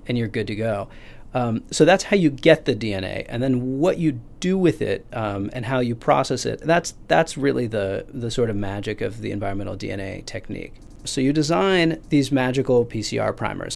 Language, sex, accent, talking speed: English, male, American, 200 wpm